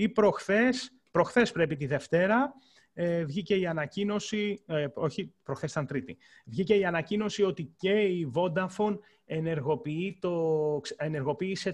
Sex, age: male, 30-49